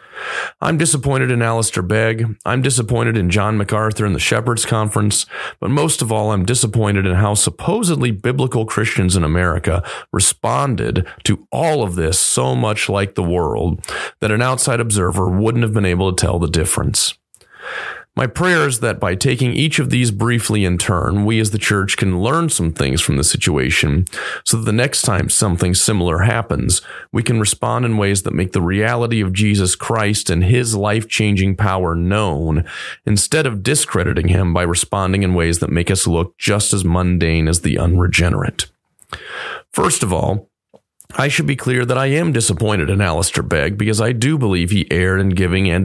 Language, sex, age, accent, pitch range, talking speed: English, male, 30-49, American, 90-115 Hz, 180 wpm